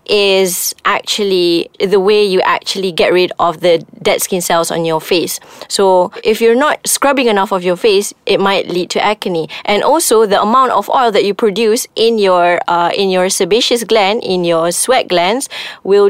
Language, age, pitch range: English, 20-39, 185-255 Hz